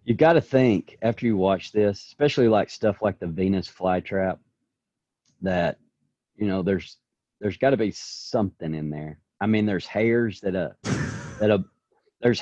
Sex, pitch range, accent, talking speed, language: male, 90-110 Hz, American, 165 wpm, English